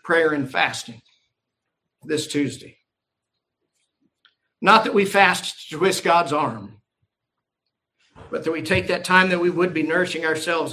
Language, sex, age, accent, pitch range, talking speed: English, male, 50-69, American, 140-180 Hz, 140 wpm